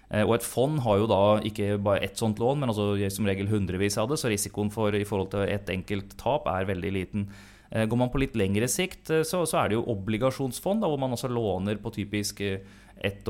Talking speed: 225 wpm